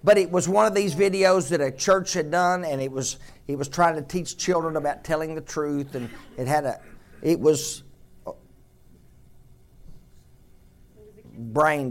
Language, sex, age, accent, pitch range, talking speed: English, male, 50-69, American, 125-180 Hz, 160 wpm